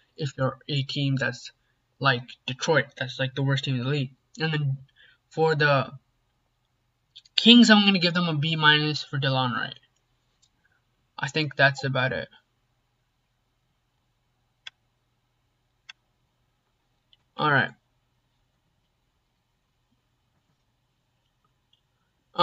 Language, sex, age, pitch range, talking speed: English, male, 20-39, 125-160 Hz, 100 wpm